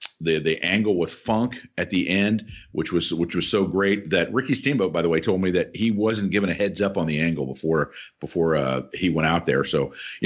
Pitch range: 105-140 Hz